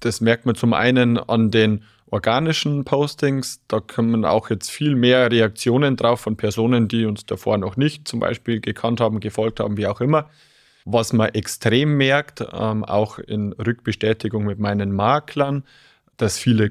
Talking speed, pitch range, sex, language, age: 160 wpm, 110-135 Hz, male, German, 30-49